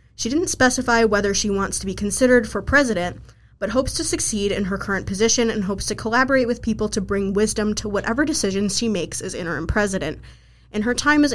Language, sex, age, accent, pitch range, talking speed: English, female, 20-39, American, 195-245 Hz, 210 wpm